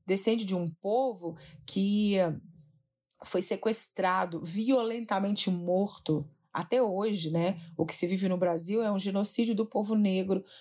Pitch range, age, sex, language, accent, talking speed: 175-210 Hz, 30-49, female, Portuguese, Brazilian, 135 wpm